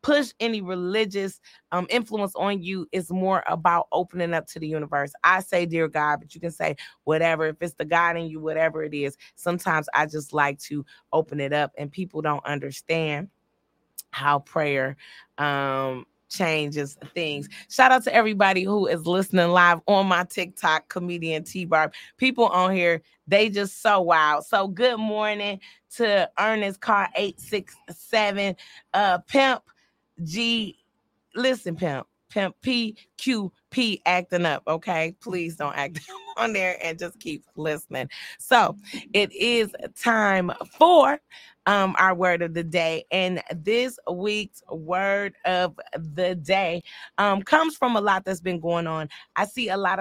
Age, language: 20-39, English